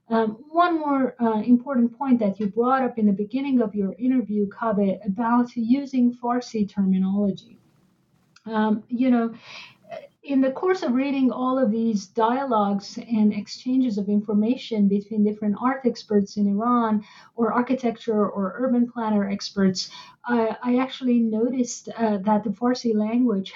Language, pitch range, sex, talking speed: English, 200-245 Hz, female, 150 wpm